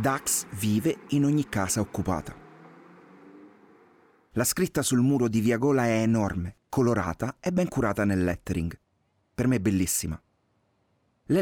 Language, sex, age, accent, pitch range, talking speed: Italian, male, 30-49, native, 100-140 Hz, 135 wpm